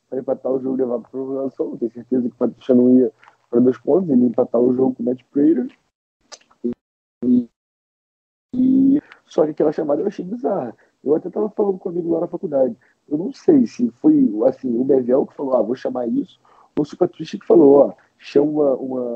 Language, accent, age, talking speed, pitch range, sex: Portuguese, Brazilian, 40-59, 205 wpm, 120-160 Hz, male